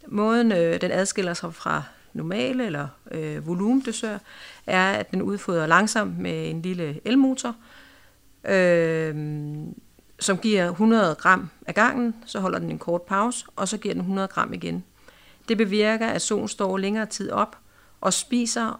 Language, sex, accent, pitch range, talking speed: Danish, female, native, 165-210 Hz, 155 wpm